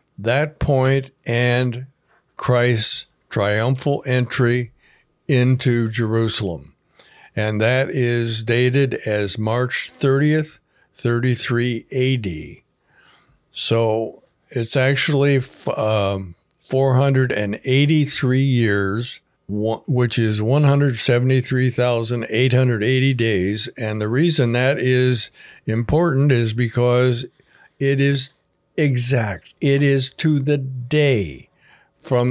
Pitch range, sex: 110-135 Hz, male